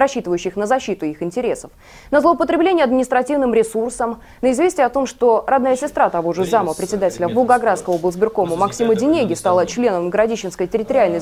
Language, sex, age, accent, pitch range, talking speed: Russian, female, 20-39, native, 195-270 Hz, 150 wpm